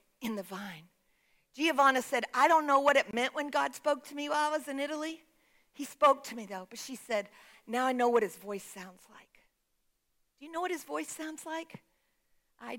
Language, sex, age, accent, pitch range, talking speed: English, female, 50-69, American, 205-275 Hz, 215 wpm